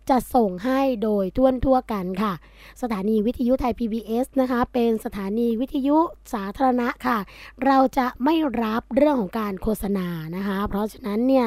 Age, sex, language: 20-39, female, Thai